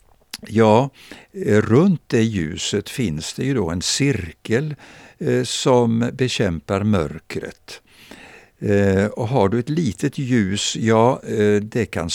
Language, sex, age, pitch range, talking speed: Swedish, male, 60-79, 90-130 Hz, 110 wpm